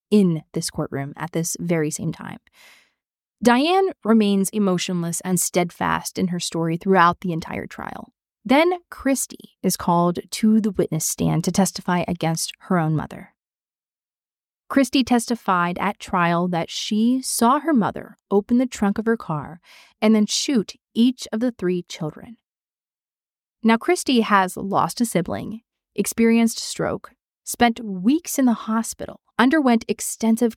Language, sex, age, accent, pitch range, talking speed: English, female, 30-49, American, 175-230 Hz, 140 wpm